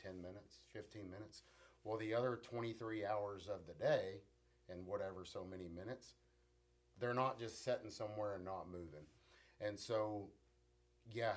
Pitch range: 90-110 Hz